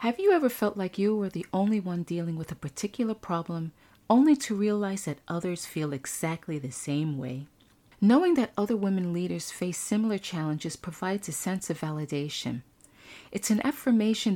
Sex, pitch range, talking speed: female, 160-215 Hz, 170 wpm